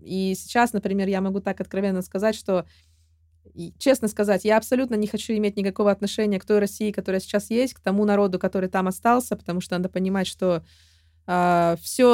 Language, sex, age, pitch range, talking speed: Russian, female, 20-39, 180-215 Hz, 185 wpm